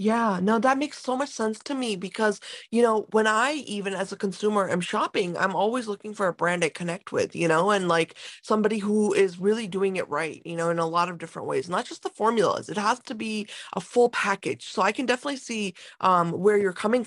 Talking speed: 240 wpm